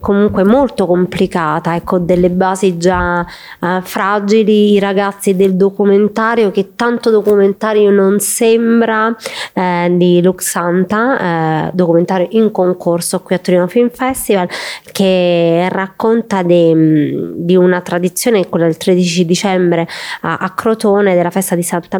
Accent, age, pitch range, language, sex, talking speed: Italian, 20-39, 180-210 Hz, English, female, 125 wpm